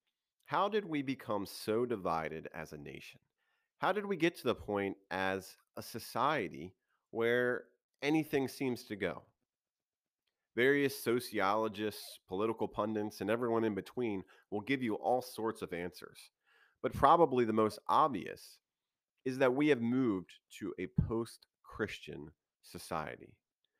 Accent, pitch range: American, 100-135 Hz